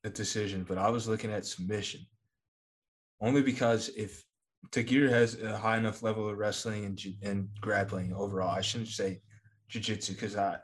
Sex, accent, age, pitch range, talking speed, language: male, American, 20-39, 95-110 Hz, 165 wpm, English